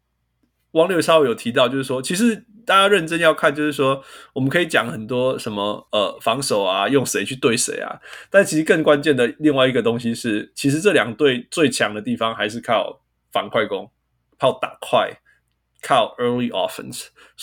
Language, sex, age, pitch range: Chinese, male, 20-39, 110-155 Hz